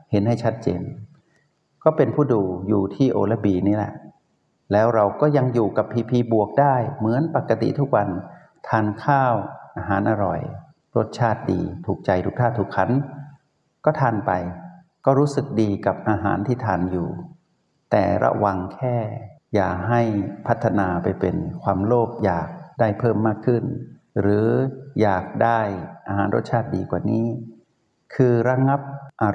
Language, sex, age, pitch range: Thai, male, 60-79, 100-135 Hz